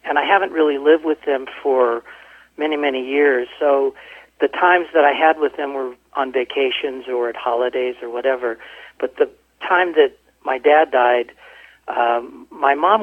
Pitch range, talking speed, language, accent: 125-165 Hz, 170 wpm, English, American